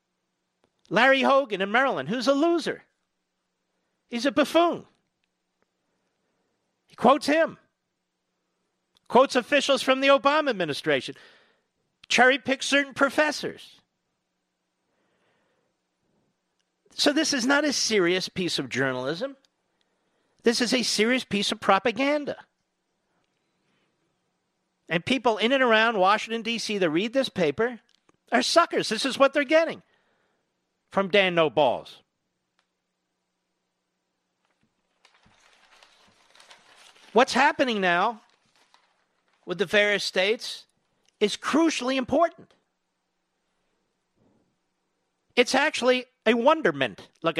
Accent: American